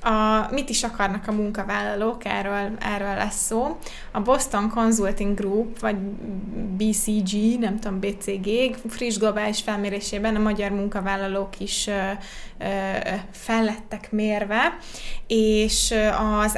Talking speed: 110 wpm